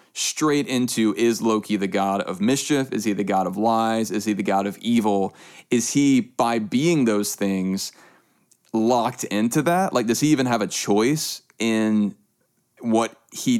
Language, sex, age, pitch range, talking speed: English, male, 20-39, 100-120 Hz, 170 wpm